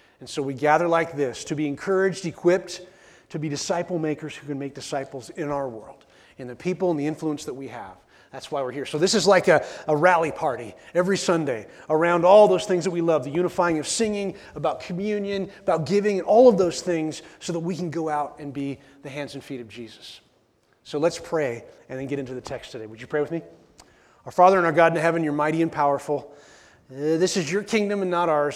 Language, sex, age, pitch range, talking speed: English, male, 30-49, 140-180 Hz, 235 wpm